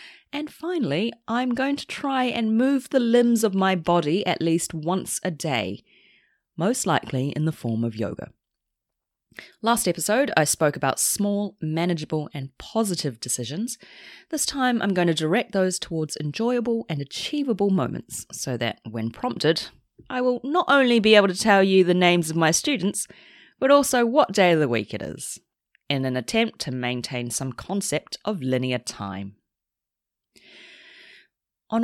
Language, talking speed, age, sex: English, 160 wpm, 30-49, female